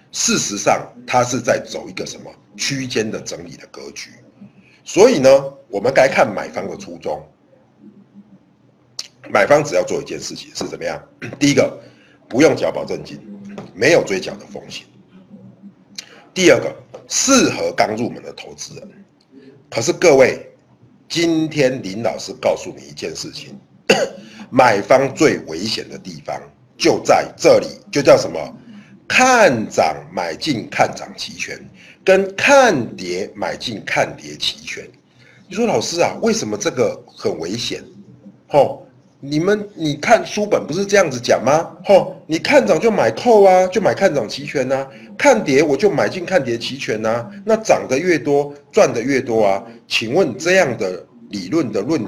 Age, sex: 50-69, male